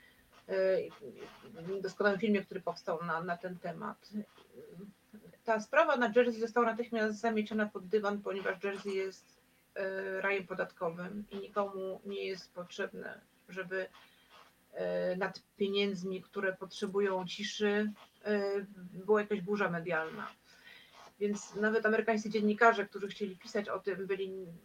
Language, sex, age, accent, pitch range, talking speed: Polish, female, 40-59, native, 190-225 Hz, 115 wpm